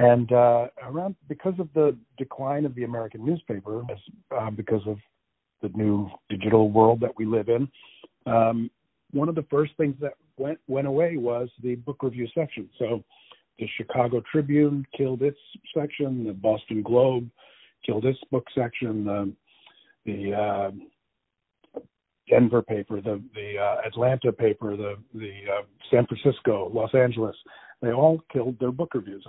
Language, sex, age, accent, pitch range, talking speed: English, male, 50-69, American, 110-145 Hz, 150 wpm